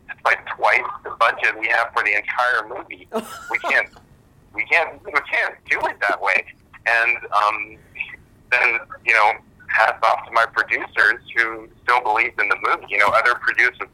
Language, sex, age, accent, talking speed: English, male, 40-59, American, 170 wpm